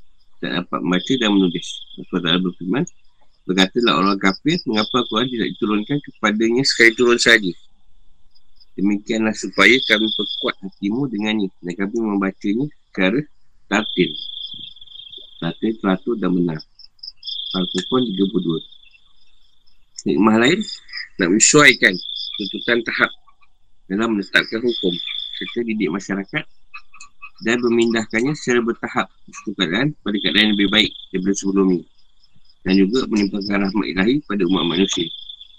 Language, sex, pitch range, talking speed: Malay, male, 95-115 Hz, 115 wpm